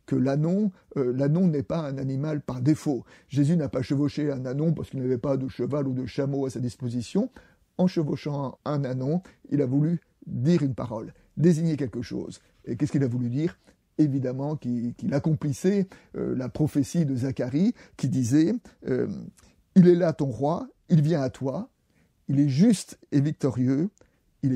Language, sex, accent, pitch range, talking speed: French, male, French, 130-155 Hz, 180 wpm